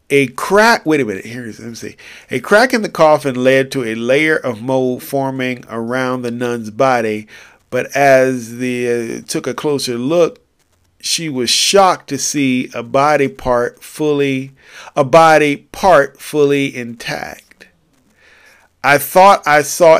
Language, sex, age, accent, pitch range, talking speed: English, male, 40-59, American, 120-170 Hz, 155 wpm